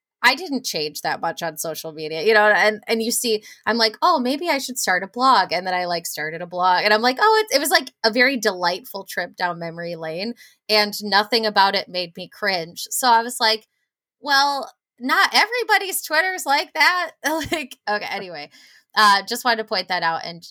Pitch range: 175-230 Hz